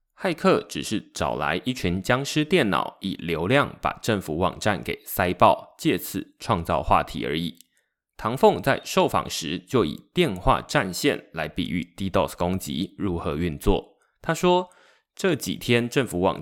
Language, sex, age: Chinese, male, 20-39